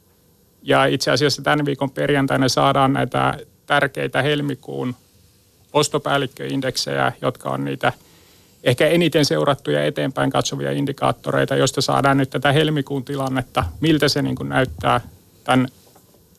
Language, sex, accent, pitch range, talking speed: Finnish, male, native, 130-150 Hz, 110 wpm